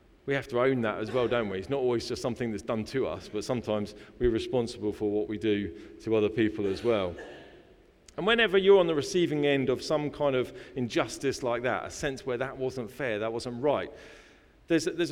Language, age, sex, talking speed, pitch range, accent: English, 40-59, male, 220 wpm, 115-155 Hz, British